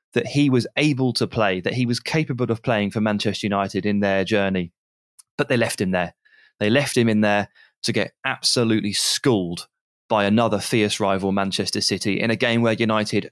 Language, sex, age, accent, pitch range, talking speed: English, male, 20-39, British, 100-120 Hz, 195 wpm